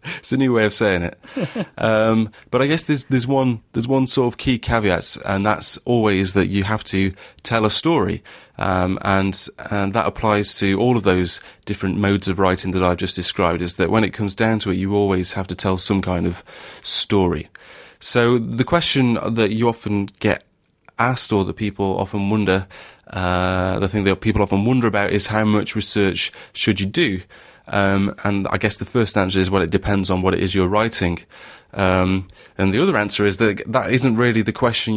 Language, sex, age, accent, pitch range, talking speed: English, male, 30-49, British, 95-115 Hz, 210 wpm